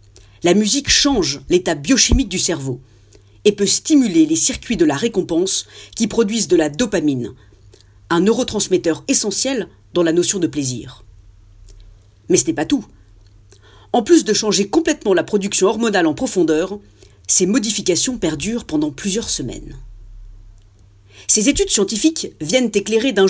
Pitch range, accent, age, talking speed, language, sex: 145-240 Hz, French, 40-59, 140 wpm, French, female